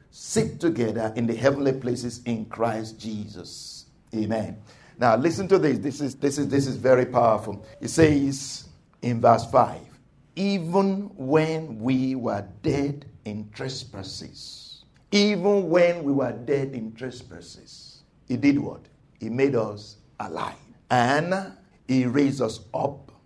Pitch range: 120-195 Hz